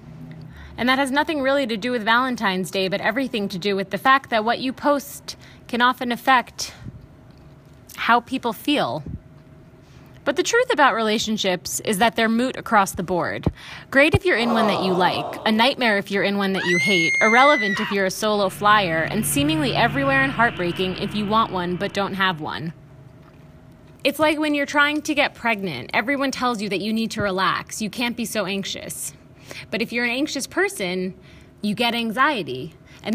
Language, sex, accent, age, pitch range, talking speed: English, female, American, 20-39, 195-255 Hz, 190 wpm